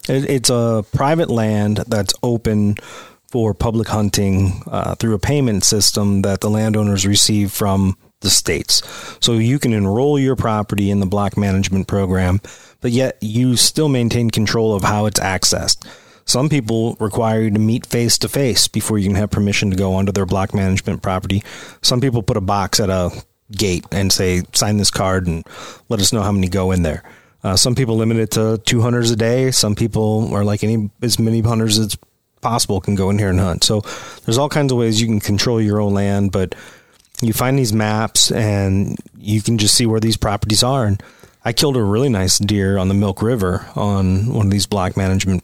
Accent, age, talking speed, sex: American, 30-49, 205 wpm, male